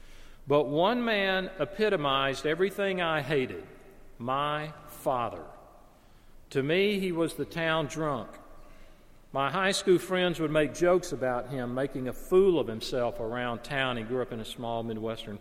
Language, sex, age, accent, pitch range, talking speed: English, male, 50-69, American, 125-165 Hz, 150 wpm